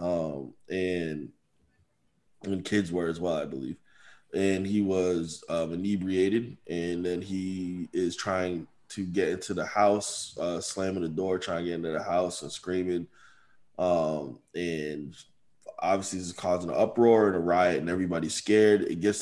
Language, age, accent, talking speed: English, 20-39, American, 160 wpm